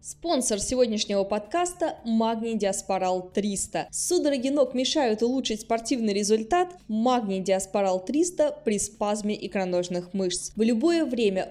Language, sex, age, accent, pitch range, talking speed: Russian, female, 20-39, native, 195-255 Hz, 115 wpm